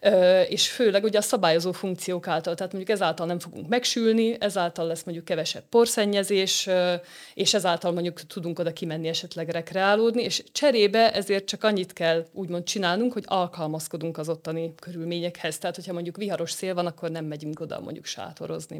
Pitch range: 170-205 Hz